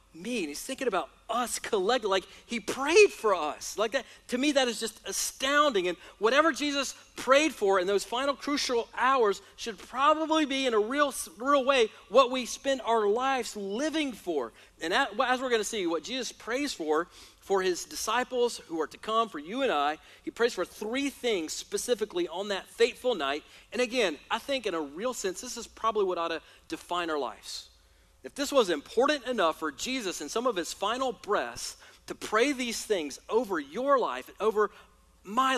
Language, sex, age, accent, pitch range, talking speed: English, male, 40-59, American, 195-275 Hz, 195 wpm